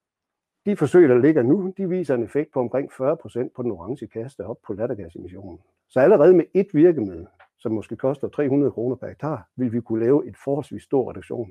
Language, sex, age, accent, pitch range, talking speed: Danish, male, 60-79, native, 110-150 Hz, 205 wpm